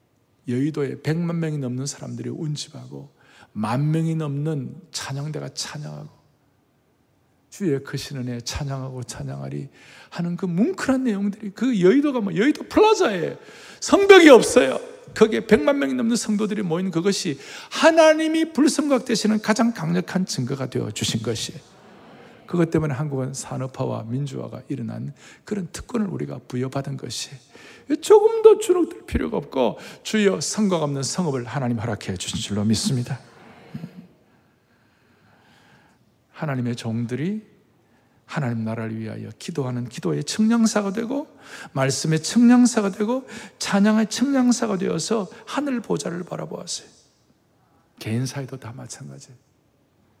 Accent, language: native, Korean